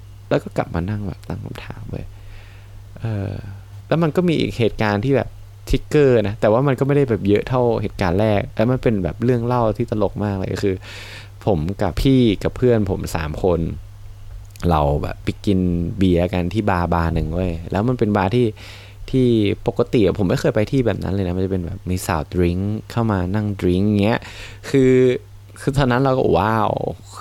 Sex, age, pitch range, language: male, 20-39, 95-115 Hz, Thai